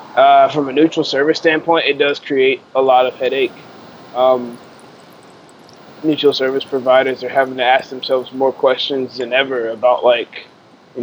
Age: 20-39